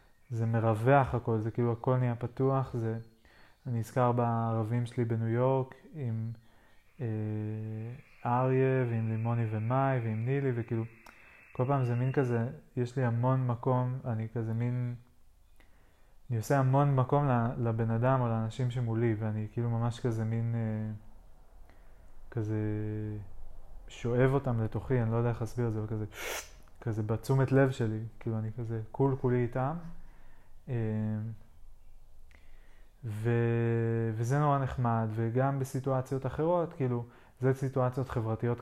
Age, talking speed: 20-39, 130 wpm